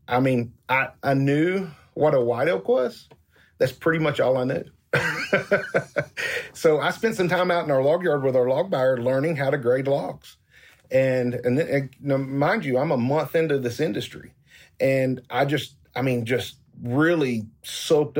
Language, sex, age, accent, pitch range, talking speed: English, male, 40-59, American, 120-150 Hz, 180 wpm